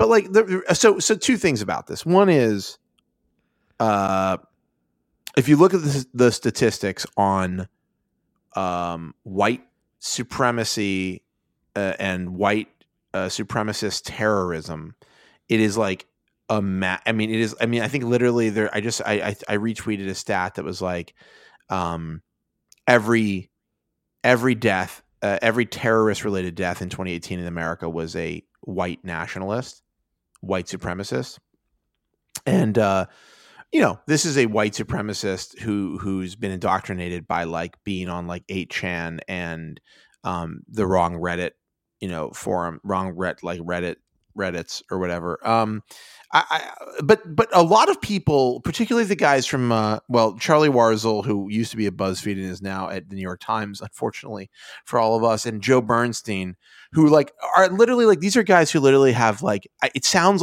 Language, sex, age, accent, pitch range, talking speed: English, male, 30-49, American, 95-120 Hz, 160 wpm